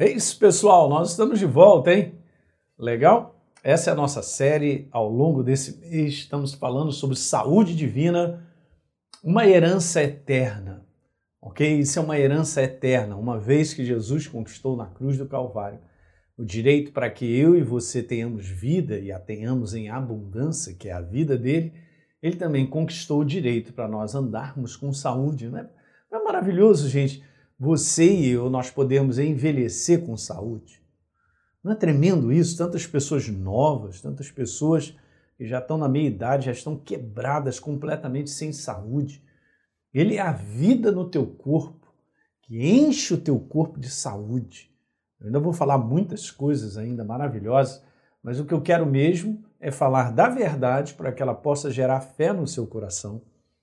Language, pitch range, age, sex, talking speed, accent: Portuguese, 120-160 Hz, 50-69, male, 160 wpm, Brazilian